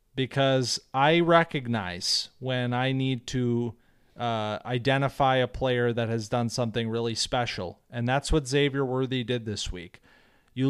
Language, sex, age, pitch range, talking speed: English, male, 30-49, 120-150 Hz, 145 wpm